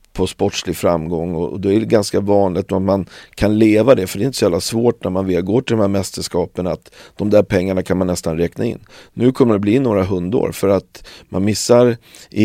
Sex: male